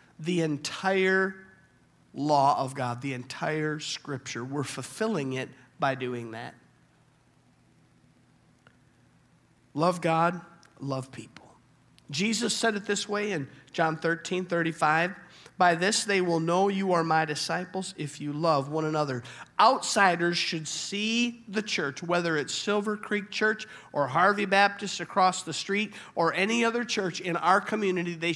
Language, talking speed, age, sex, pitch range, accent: English, 140 wpm, 50-69, male, 150-200 Hz, American